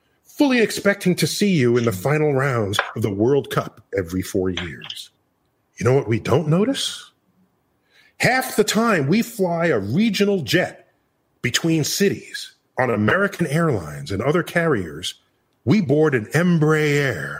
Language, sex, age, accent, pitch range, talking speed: Portuguese, male, 40-59, American, 150-205 Hz, 145 wpm